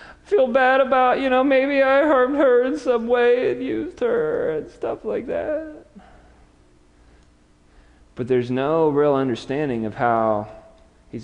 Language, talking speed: English, 145 wpm